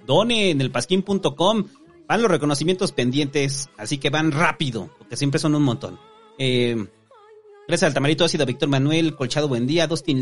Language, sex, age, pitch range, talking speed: Spanish, male, 40-59, 120-155 Hz, 175 wpm